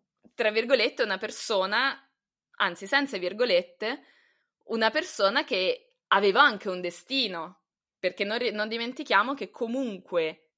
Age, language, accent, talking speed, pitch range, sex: 20-39, Italian, native, 115 wpm, 190-265 Hz, female